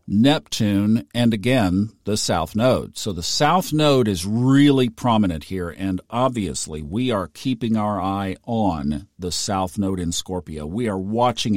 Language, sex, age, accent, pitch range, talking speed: English, male, 50-69, American, 100-135 Hz, 155 wpm